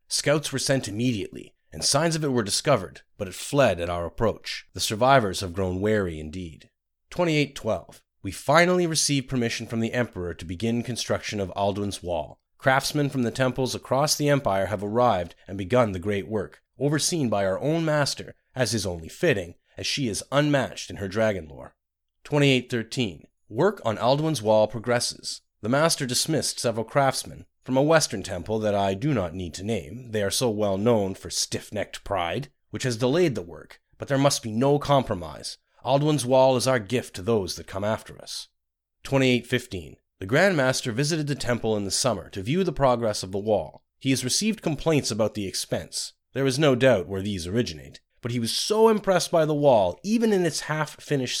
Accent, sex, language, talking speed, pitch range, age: American, male, English, 190 wpm, 100-140 Hz, 30-49